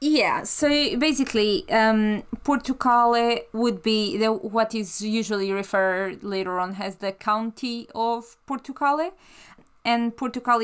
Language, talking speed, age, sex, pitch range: English, 120 wpm, 20-39, female, 200-250 Hz